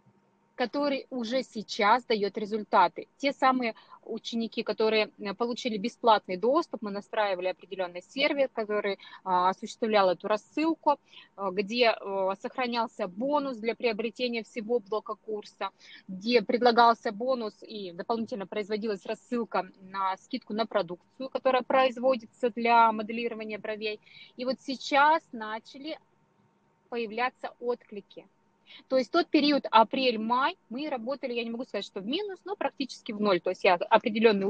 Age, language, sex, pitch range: 20-39, Russian, female, 200-250 Hz